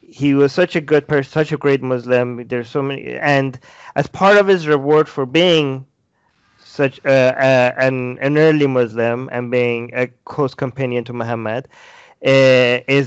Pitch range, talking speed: 130-165 Hz, 170 wpm